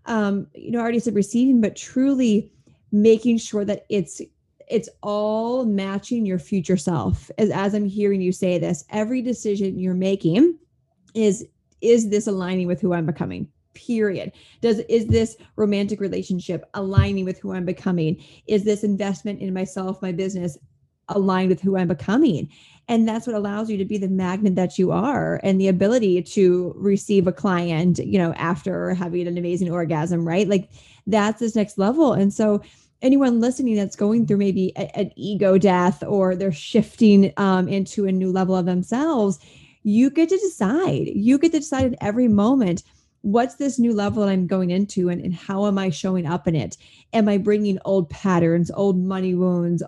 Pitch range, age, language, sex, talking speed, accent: 180-210 Hz, 30-49, English, female, 180 wpm, American